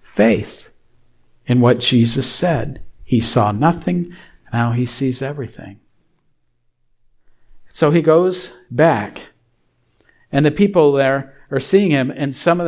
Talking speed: 125 wpm